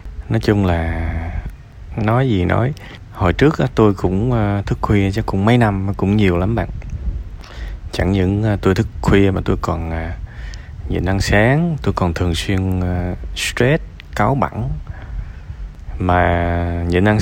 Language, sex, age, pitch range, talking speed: Vietnamese, male, 20-39, 85-110 Hz, 145 wpm